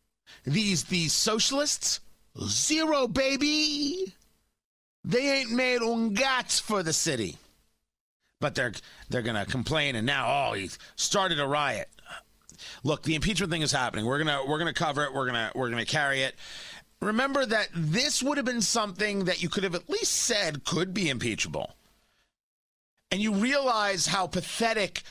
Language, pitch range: English, 155-215 Hz